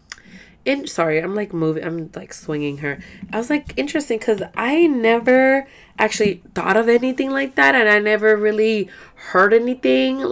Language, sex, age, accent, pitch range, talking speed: English, female, 20-39, American, 165-230 Hz, 165 wpm